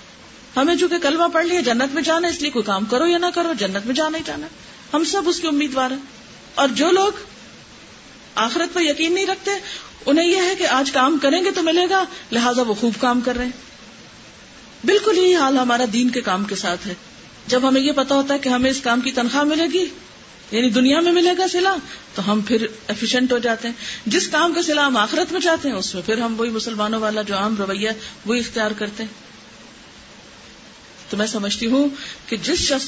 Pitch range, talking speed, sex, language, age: 220-300 Hz, 225 wpm, female, Urdu, 40-59